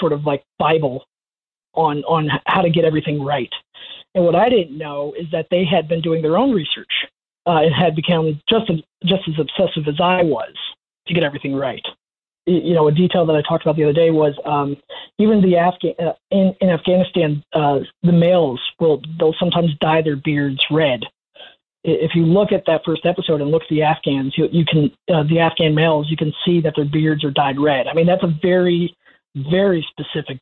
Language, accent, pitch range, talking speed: English, American, 155-180 Hz, 210 wpm